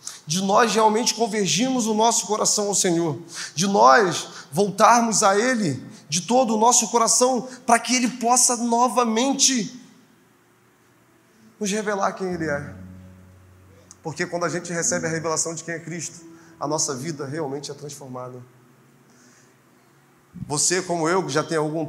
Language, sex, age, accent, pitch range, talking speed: Portuguese, male, 20-39, Brazilian, 135-180 Hz, 145 wpm